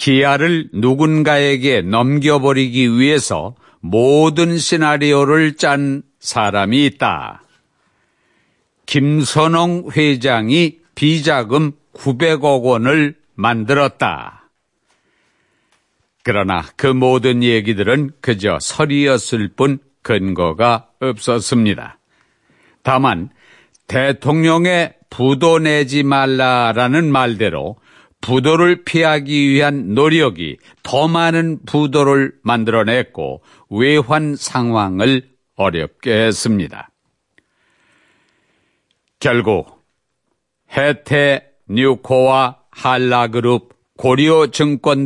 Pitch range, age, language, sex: 120-150 Hz, 60-79, Korean, male